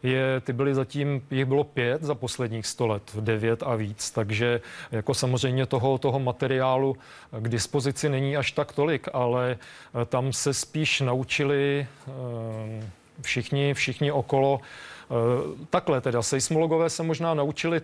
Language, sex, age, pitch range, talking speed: Czech, male, 40-59, 120-140 Hz, 135 wpm